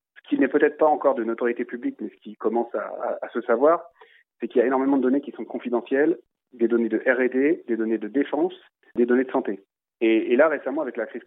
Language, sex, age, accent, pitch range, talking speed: French, male, 30-49, French, 115-150 Hz, 250 wpm